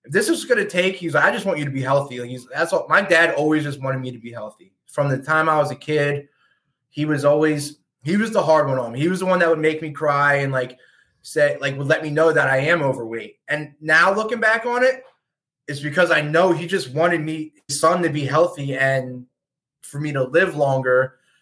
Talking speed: 250 wpm